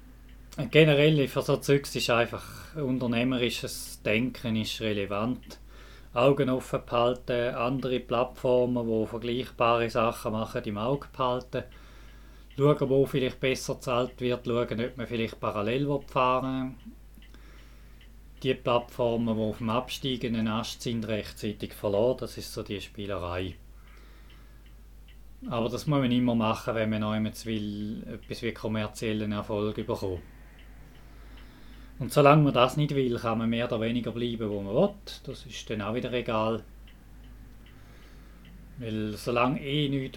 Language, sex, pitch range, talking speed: German, male, 110-130 Hz, 130 wpm